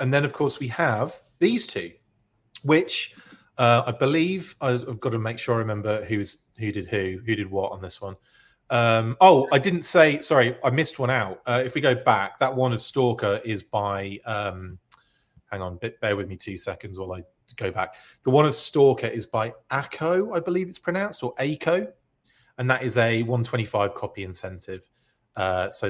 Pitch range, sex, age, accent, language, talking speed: 105-140 Hz, male, 30-49, British, English, 195 wpm